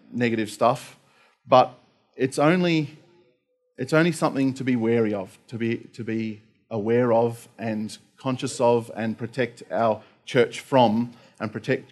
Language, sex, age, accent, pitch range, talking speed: English, male, 40-59, Australian, 110-130 Hz, 140 wpm